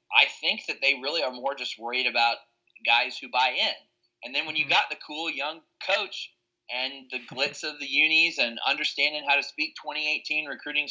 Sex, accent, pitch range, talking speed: male, American, 120-145 Hz, 200 wpm